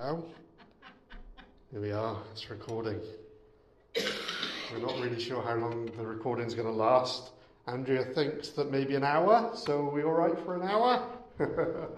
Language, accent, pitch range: English, British, 125-155 Hz